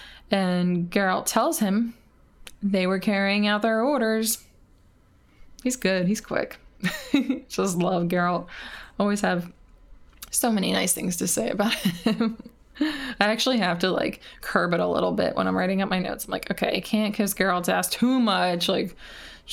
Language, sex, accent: English, female, American